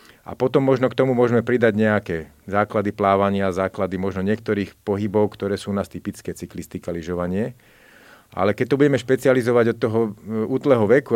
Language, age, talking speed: Slovak, 40-59, 160 wpm